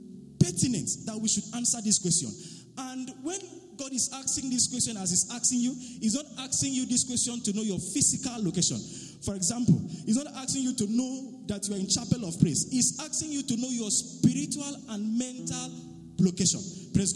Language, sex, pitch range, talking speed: English, male, 195-255 Hz, 190 wpm